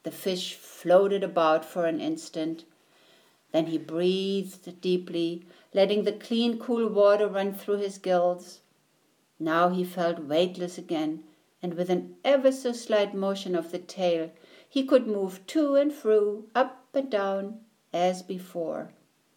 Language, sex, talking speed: English, female, 145 wpm